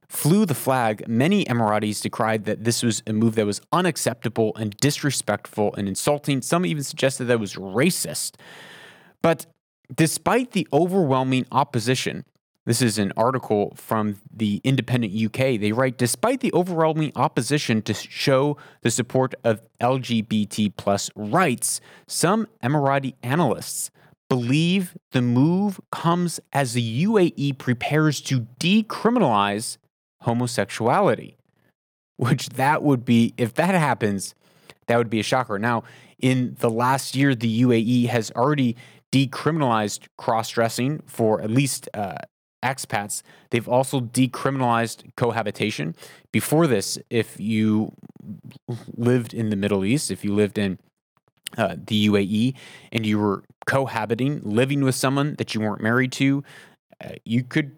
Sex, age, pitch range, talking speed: male, 30-49, 110-145 Hz, 135 wpm